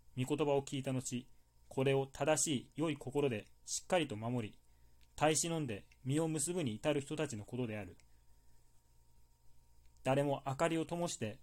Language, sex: Japanese, male